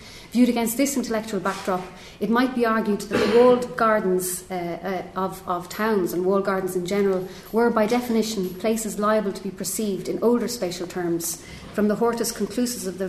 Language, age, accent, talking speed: English, 30-49, Irish, 190 wpm